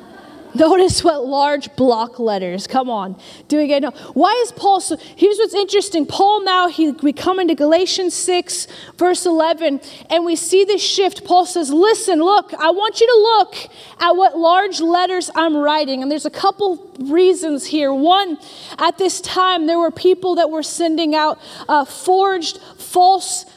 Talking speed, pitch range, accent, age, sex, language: 175 wpm, 285-355 Hz, American, 30-49, female, English